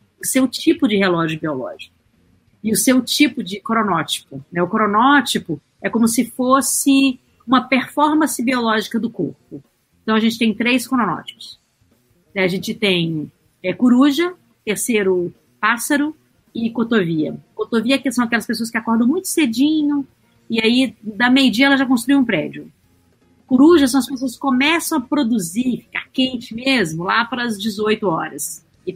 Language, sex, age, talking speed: Portuguese, female, 40-59, 155 wpm